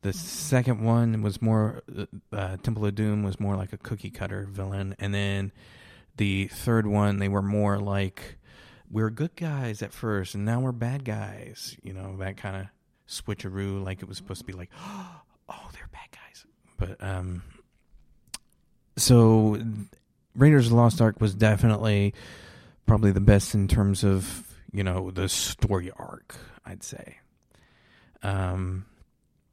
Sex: male